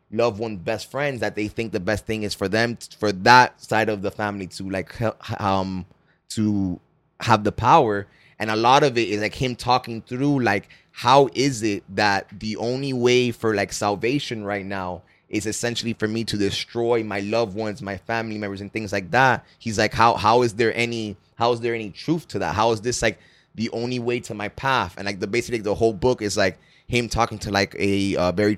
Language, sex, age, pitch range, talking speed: English, male, 20-39, 100-115 Hz, 225 wpm